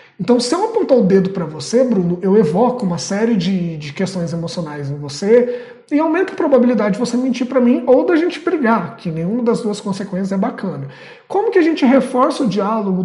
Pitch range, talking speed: 195-270 Hz, 210 wpm